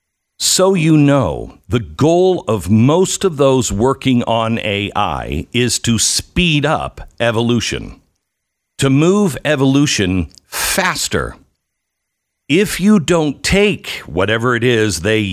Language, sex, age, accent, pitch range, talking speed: English, male, 60-79, American, 95-135 Hz, 115 wpm